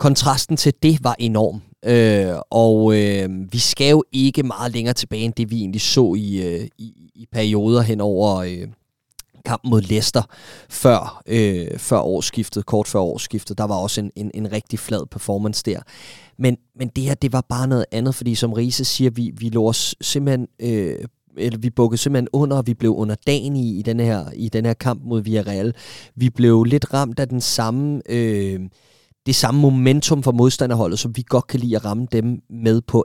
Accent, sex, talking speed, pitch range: native, male, 190 wpm, 110-130 Hz